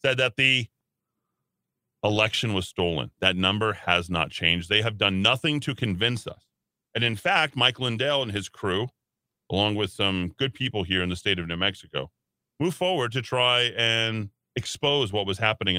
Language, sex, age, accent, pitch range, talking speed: English, male, 30-49, American, 95-145 Hz, 180 wpm